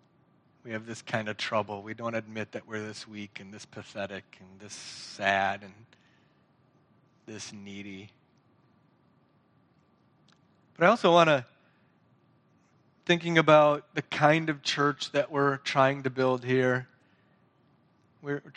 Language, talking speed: English, 130 wpm